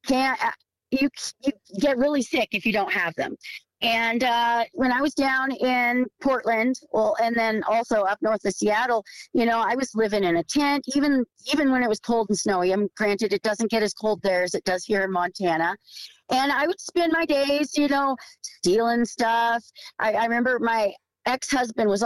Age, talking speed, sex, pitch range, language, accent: 40-59, 205 wpm, female, 205-260 Hz, English, American